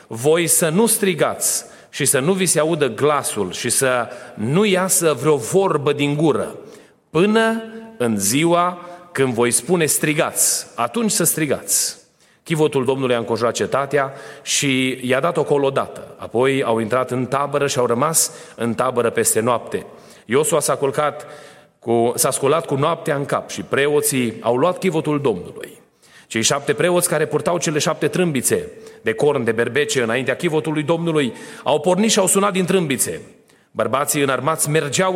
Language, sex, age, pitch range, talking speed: Romanian, male, 30-49, 130-175 Hz, 155 wpm